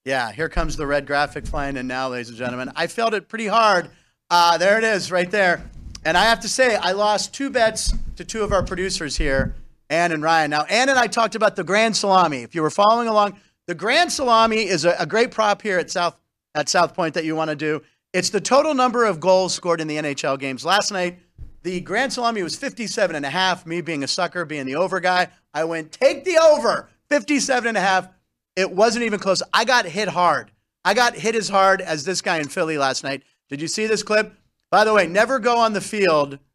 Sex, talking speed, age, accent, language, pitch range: male, 240 wpm, 40-59, American, English, 160-225 Hz